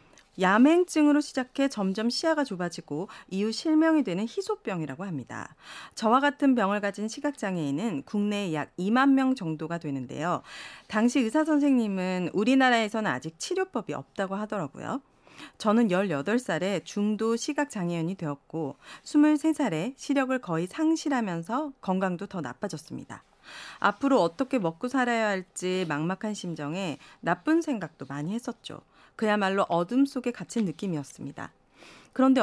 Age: 40-59